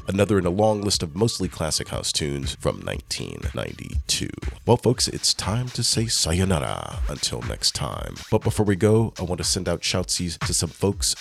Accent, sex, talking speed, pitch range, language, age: American, male, 185 wpm, 80-105 Hz, English, 40-59